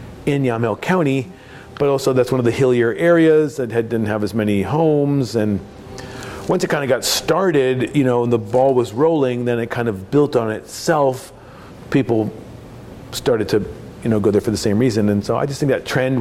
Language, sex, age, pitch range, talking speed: English, male, 40-59, 110-130 Hz, 210 wpm